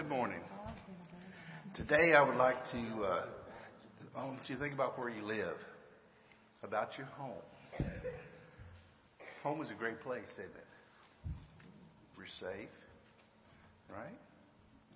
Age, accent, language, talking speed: 60-79, American, English, 115 wpm